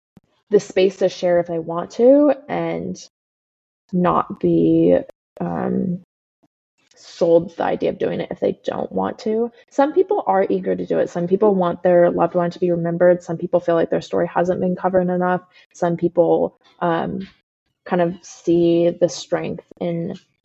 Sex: female